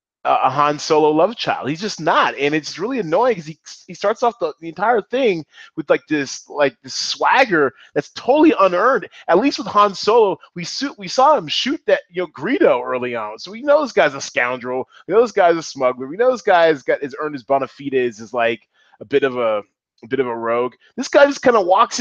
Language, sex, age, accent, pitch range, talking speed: English, male, 20-39, American, 115-175 Hz, 245 wpm